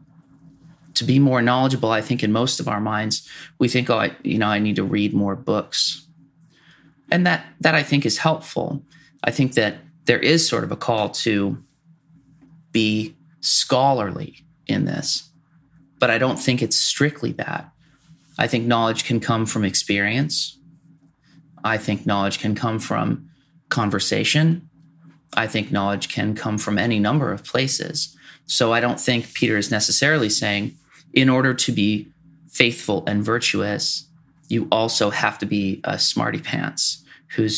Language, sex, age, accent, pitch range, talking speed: English, male, 30-49, American, 110-155 Hz, 155 wpm